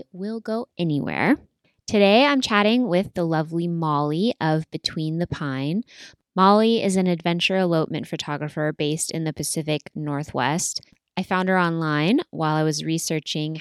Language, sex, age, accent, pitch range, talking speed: English, female, 10-29, American, 150-180 Hz, 145 wpm